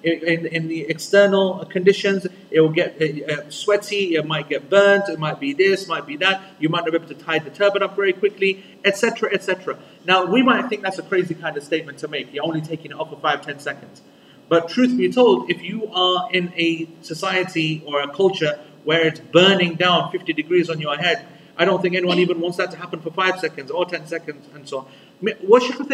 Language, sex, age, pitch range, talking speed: English, male, 30-49, 155-190 Hz, 225 wpm